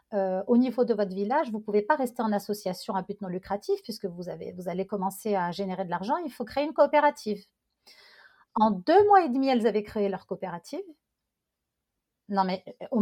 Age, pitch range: 40-59, 200-250 Hz